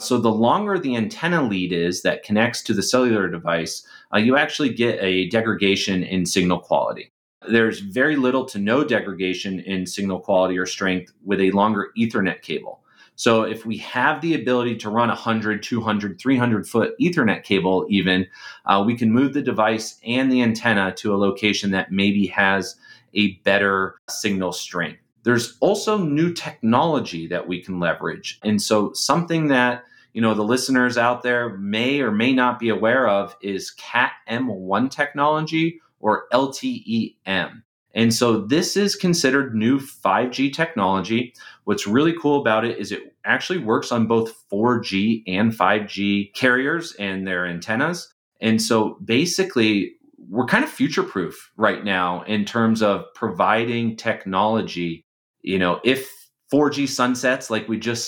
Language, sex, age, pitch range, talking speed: English, male, 30-49, 100-125 Hz, 160 wpm